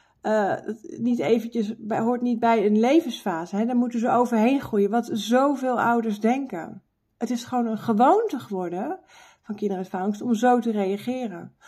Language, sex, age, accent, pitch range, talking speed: Dutch, female, 40-59, Dutch, 210-245 Hz, 145 wpm